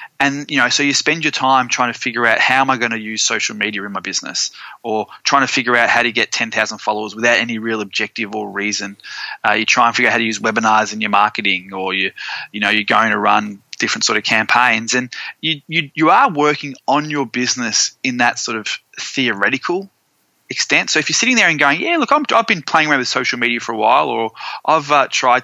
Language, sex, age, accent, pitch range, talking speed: English, male, 20-39, Australian, 110-140 Hz, 245 wpm